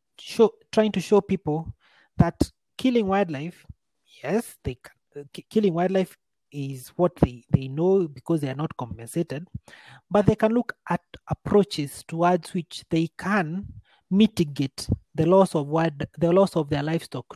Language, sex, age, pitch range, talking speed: English, male, 30-49, 145-180 Hz, 150 wpm